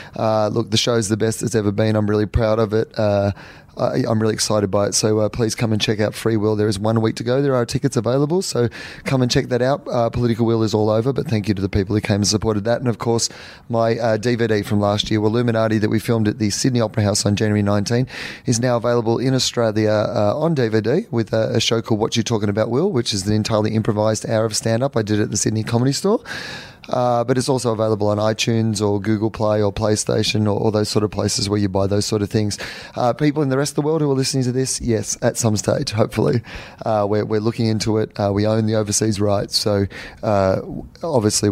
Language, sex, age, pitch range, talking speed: English, male, 30-49, 105-120 Hz, 255 wpm